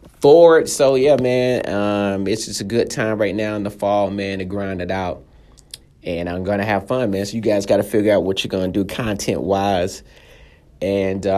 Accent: American